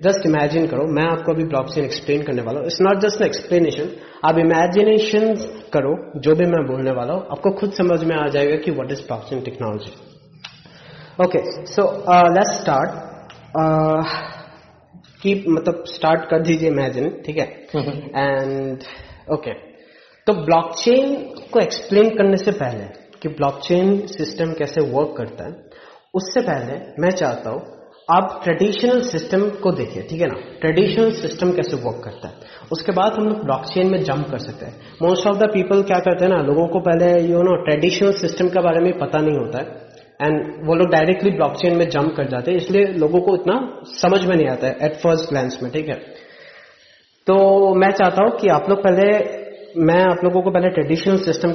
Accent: native